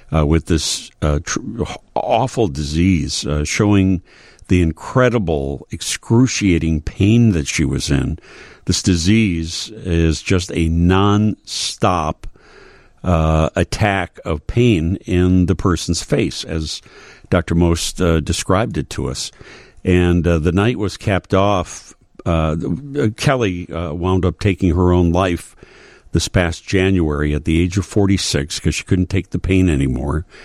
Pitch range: 80-100 Hz